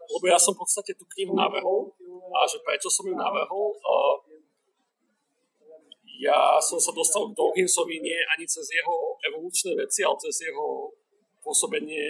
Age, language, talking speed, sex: 40-59, Slovak, 160 wpm, male